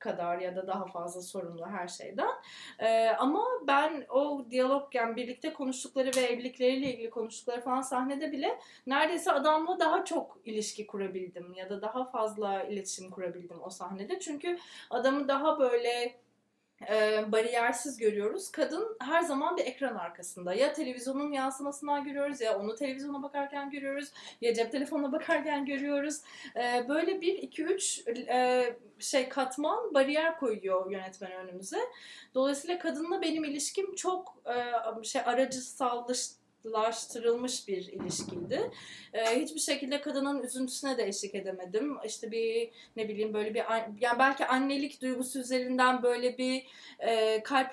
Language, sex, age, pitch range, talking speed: English, female, 30-49, 225-285 Hz, 140 wpm